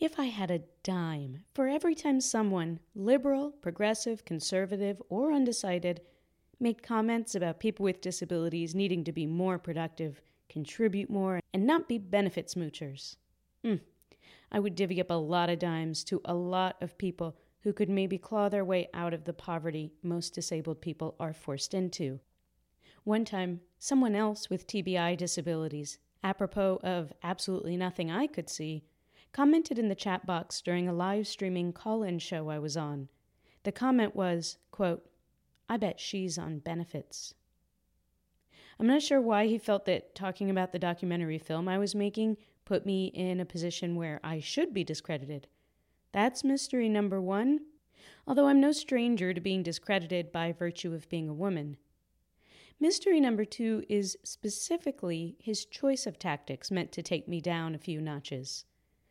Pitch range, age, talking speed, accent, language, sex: 165-210 Hz, 30-49, 160 wpm, American, English, female